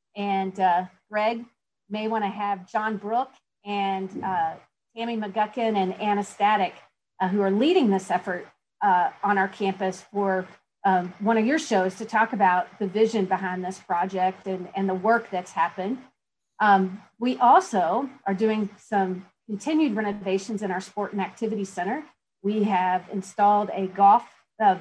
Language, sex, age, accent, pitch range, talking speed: English, female, 40-59, American, 190-220 Hz, 155 wpm